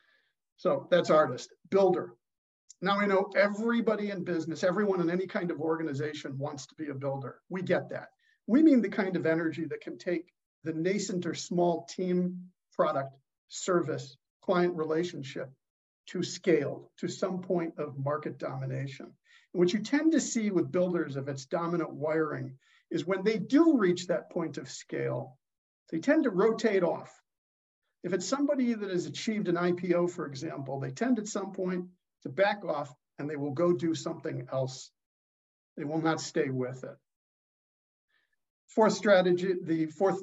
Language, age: English, 50-69